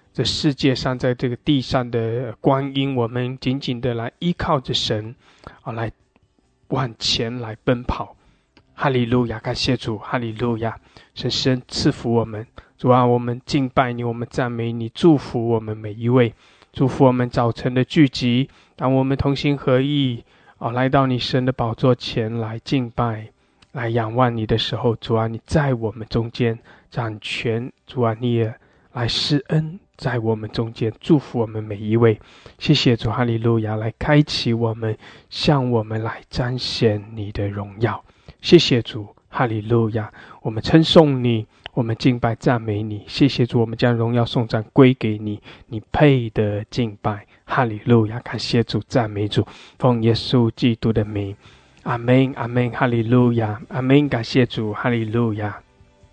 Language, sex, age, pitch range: English, male, 20-39, 110-130 Hz